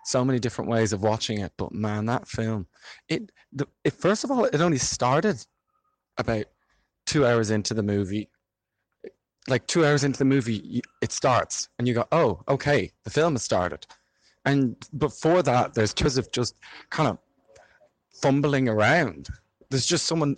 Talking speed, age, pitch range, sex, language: 165 wpm, 20-39, 110-150 Hz, male, English